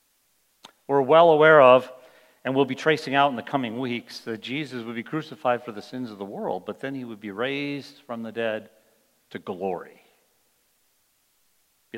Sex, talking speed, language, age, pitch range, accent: male, 180 wpm, English, 50-69, 120-145 Hz, American